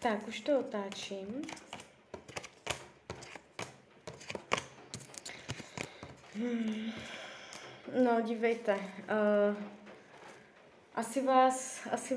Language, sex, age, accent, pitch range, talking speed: Czech, female, 20-39, native, 230-270 Hz, 55 wpm